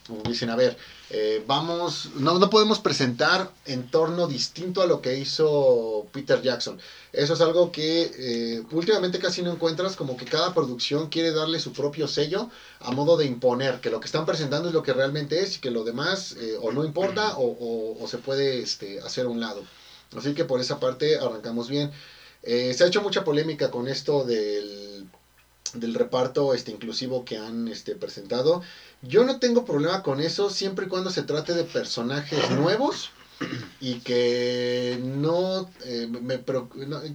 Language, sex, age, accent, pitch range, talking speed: Spanish, male, 30-49, Mexican, 120-165 Hz, 185 wpm